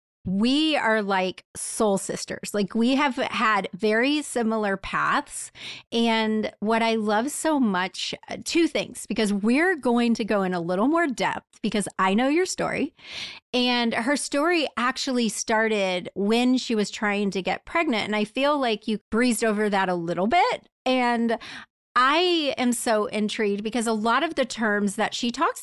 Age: 30-49